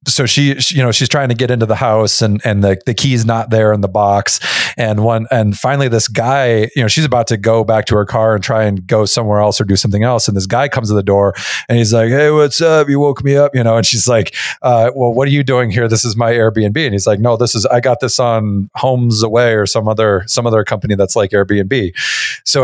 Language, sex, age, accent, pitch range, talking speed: English, male, 30-49, American, 105-125 Hz, 275 wpm